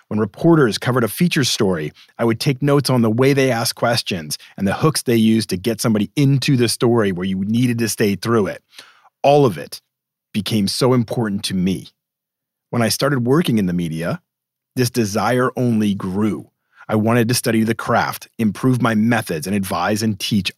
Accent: American